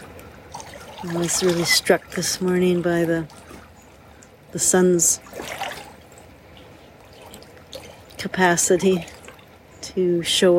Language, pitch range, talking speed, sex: English, 170-180 Hz, 75 wpm, female